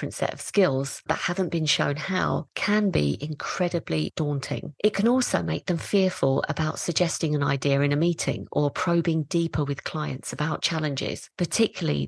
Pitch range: 140-175 Hz